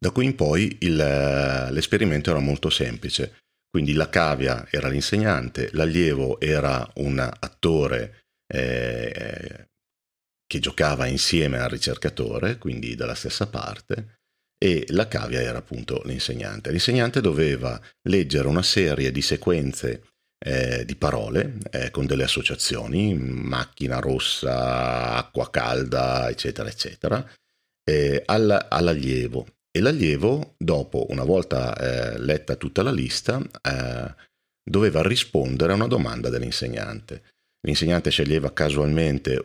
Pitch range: 65-80 Hz